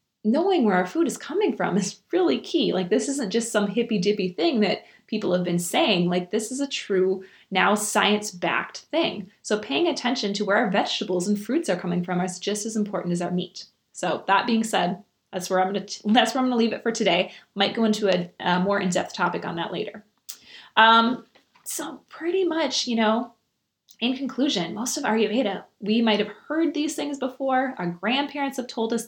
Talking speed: 210 wpm